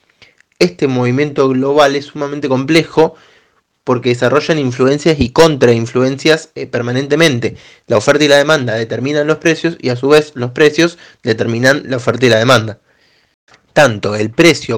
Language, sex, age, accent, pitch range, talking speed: Spanish, male, 20-39, Argentinian, 115-145 Hz, 140 wpm